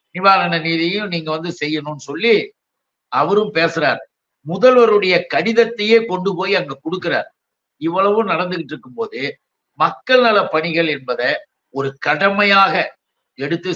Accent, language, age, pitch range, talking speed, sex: native, Tamil, 60-79, 165-195 Hz, 105 wpm, male